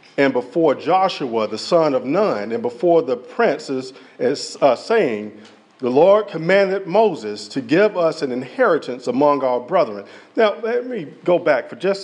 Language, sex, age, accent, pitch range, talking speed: English, male, 40-59, American, 135-190 Hz, 170 wpm